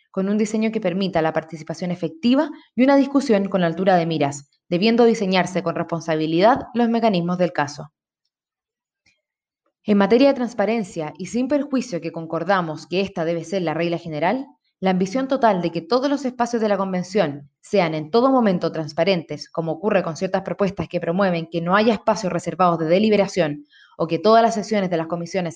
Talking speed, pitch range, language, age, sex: 180 wpm, 165-210 Hz, Spanish, 20-39, female